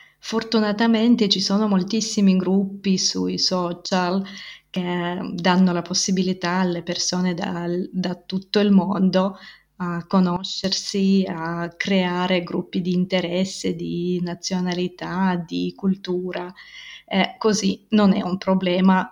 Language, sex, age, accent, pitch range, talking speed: Italian, female, 30-49, native, 180-220 Hz, 105 wpm